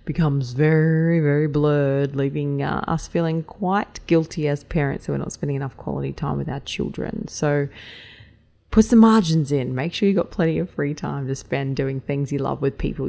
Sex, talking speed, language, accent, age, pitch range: female, 195 wpm, English, Australian, 20-39, 150-200 Hz